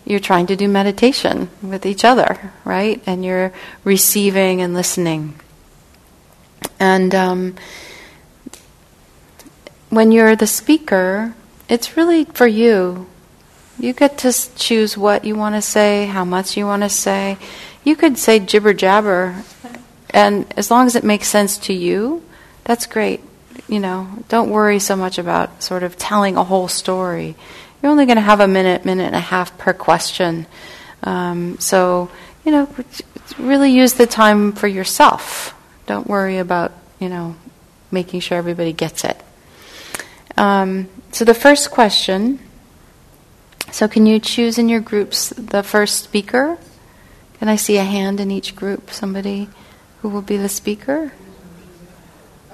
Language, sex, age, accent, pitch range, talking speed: English, female, 40-59, American, 185-225 Hz, 145 wpm